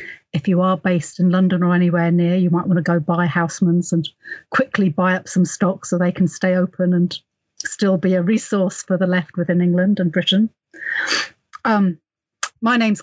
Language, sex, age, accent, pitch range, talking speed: English, female, 40-59, British, 175-200 Hz, 195 wpm